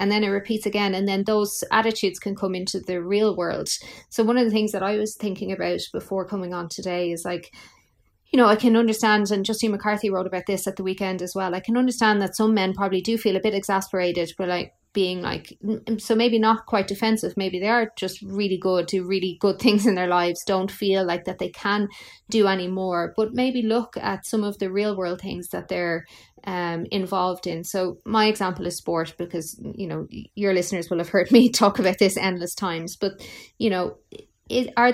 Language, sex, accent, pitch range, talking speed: English, female, Irish, 180-215 Hz, 220 wpm